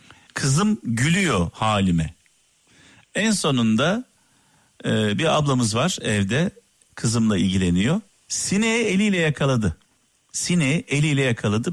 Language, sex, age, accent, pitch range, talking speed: Turkish, male, 50-69, native, 110-160 Hz, 90 wpm